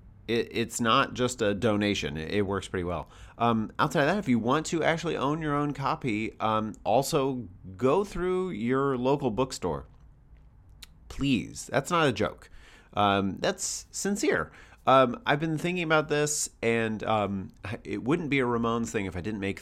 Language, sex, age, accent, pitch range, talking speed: English, male, 30-49, American, 95-130 Hz, 170 wpm